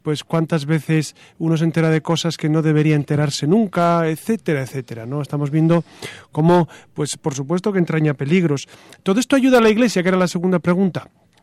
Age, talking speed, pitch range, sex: 40-59, 190 wpm, 150-175 Hz, male